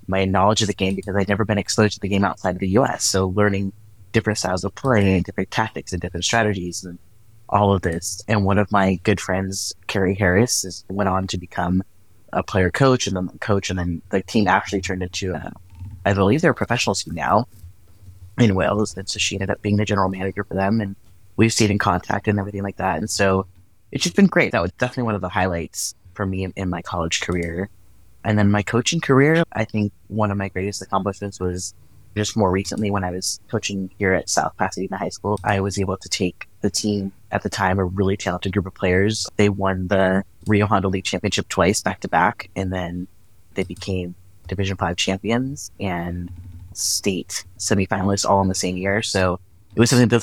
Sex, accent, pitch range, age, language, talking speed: male, American, 95-105 Hz, 30-49, English, 215 wpm